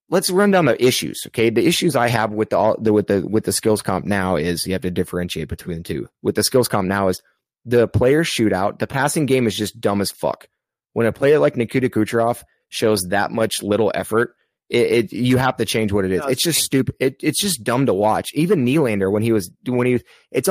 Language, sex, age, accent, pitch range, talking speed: English, male, 30-49, American, 110-145 Hz, 235 wpm